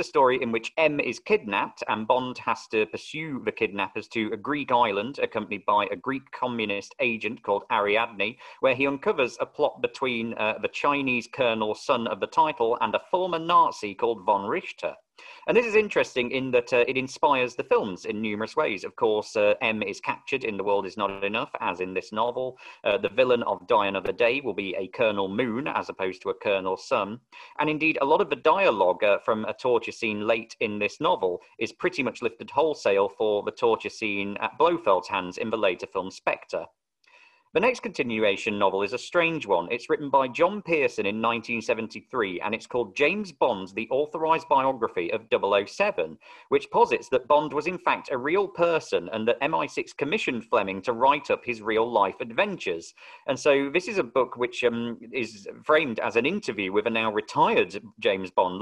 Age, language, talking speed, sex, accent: 40-59, English, 195 wpm, male, British